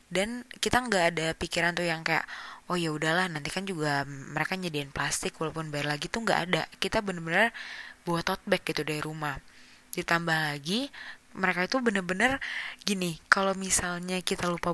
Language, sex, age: Indonesian, female, 20-39